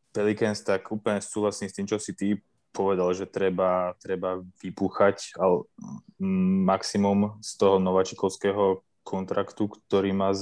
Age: 20-39